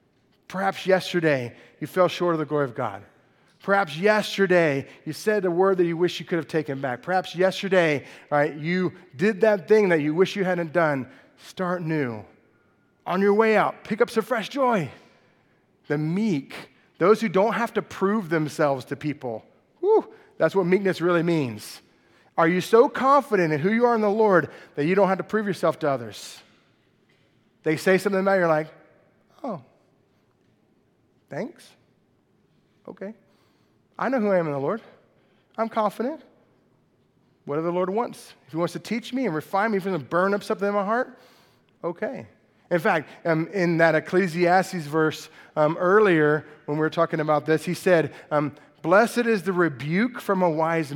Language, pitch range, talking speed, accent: English, 155-205 Hz, 180 wpm, American